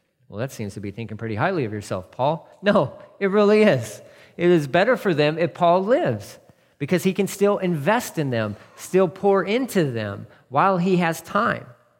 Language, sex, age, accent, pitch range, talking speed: English, male, 40-59, American, 130-190 Hz, 190 wpm